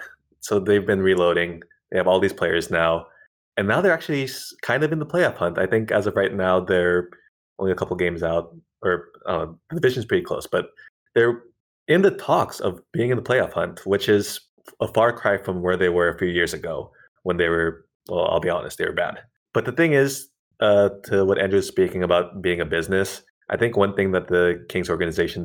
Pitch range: 85-100 Hz